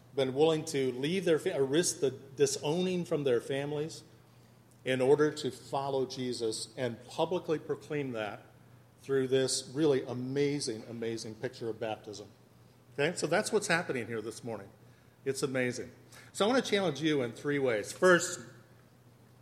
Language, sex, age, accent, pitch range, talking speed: English, male, 50-69, American, 125-155 Hz, 150 wpm